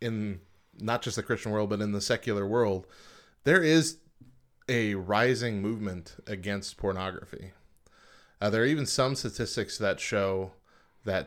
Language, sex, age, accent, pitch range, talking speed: English, male, 20-39, American, 95-120 Hz, 145 wpm